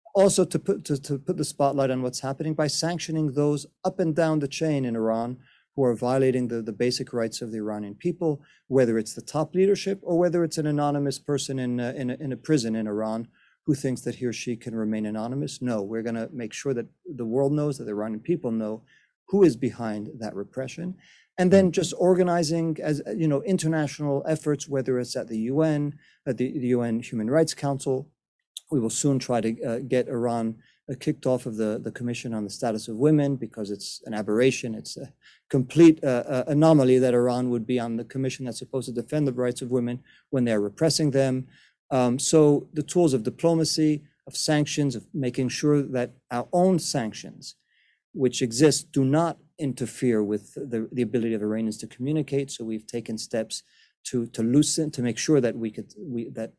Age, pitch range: 40-59, 115-150 Hz